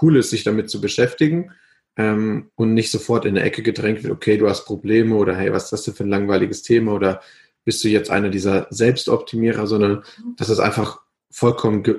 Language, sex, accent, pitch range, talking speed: German, male, German, 105-120 Hz, 210 wpm